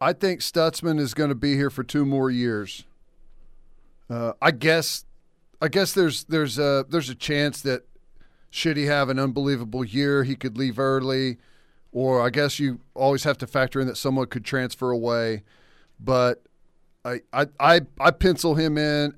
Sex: male